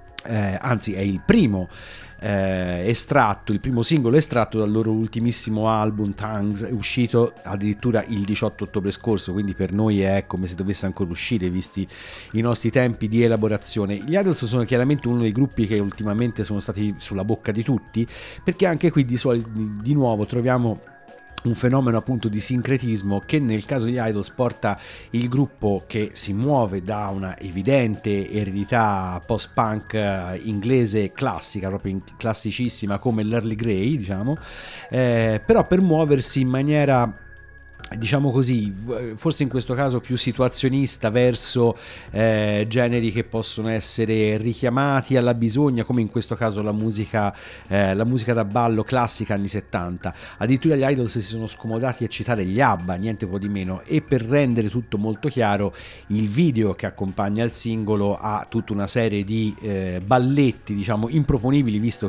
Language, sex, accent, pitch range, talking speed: Italian, male, native, 100-120 Hz, 160 wpm